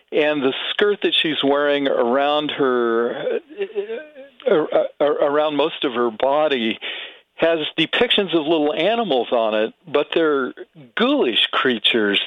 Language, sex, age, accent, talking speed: English, male, 50-69, American, 130 wpm